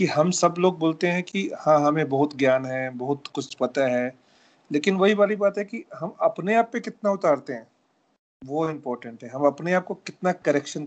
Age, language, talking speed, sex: 40-59, Hindi, 210 wpm, male